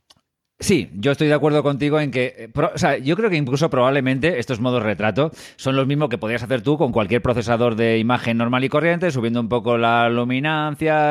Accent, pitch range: Spanish, 110-135 Hz